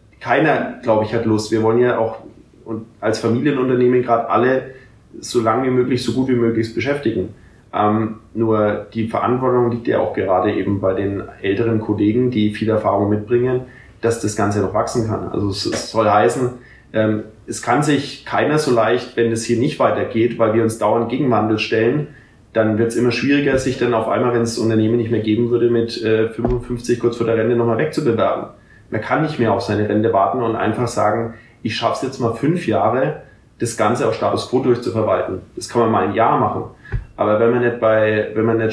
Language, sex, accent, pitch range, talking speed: German, male, German, 110-120 Hz, 205 wpm